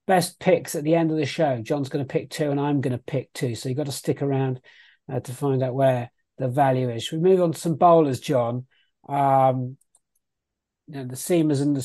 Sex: male